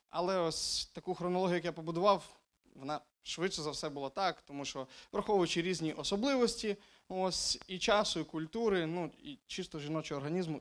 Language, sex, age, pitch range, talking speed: Ukrainian, male, 20-39, 180-230 Hz, 160 wpm